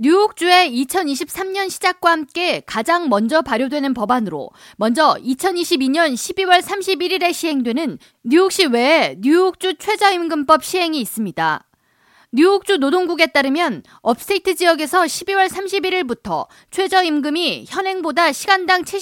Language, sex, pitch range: Korean, female, 255-360 Hz